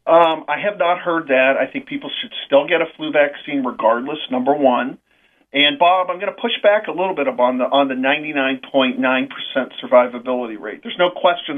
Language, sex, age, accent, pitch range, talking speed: English, male, 50-69, American, 140-230 Hz, 195 wpm